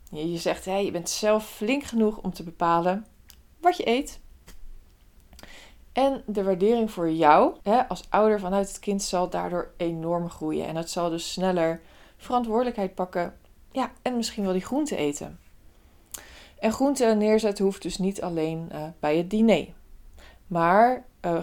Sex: female